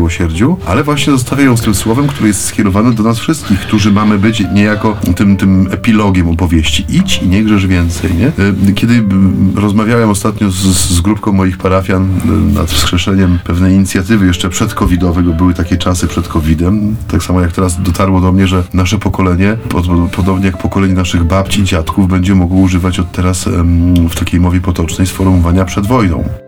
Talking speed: 170 wpm